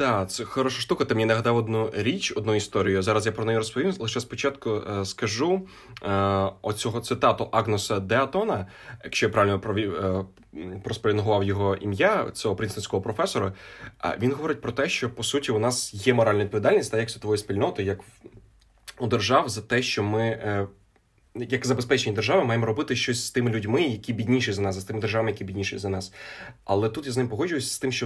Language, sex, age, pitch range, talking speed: Ukrainian, male, 20-39, 105-125 Hz, 190 wpm